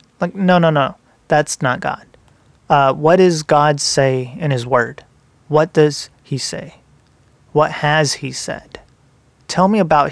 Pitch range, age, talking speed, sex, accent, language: 135-160 Hz, 30-49, 155 wpm, male, American, English